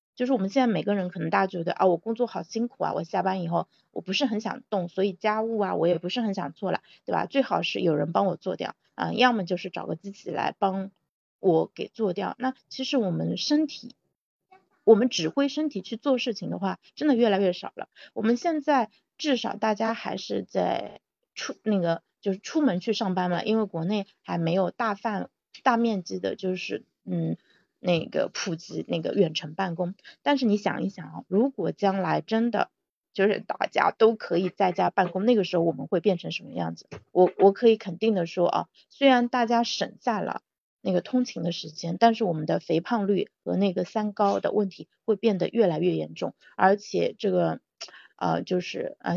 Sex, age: female, 30-49